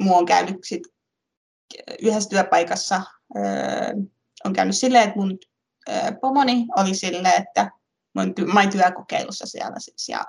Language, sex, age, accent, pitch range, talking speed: Finnish, female, 20-39, native, 180-240 Hz, 135 wpm